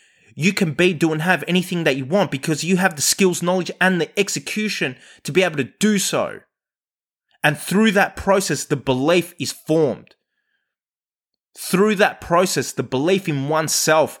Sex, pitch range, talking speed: male, 150-195 Hz, 170 wpm